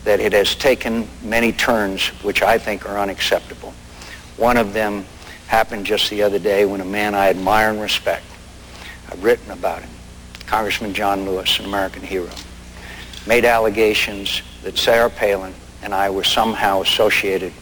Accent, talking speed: American, 150 wpm